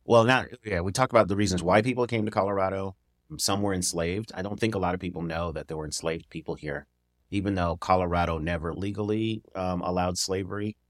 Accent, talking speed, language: American, 210 wpm, English